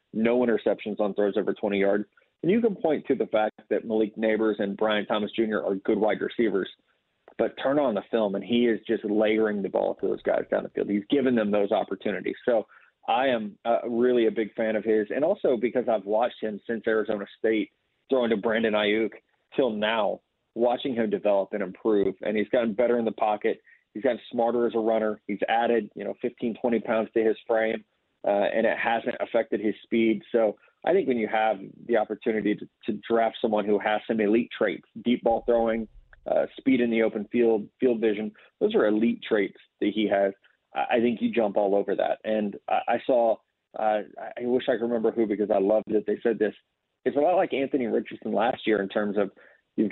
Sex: male